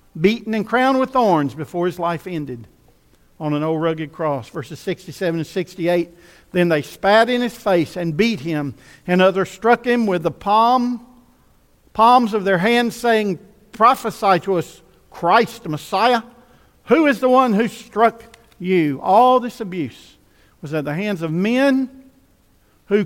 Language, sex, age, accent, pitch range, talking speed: English, male, 50-69, American, 145-220 Hz, 160 wpm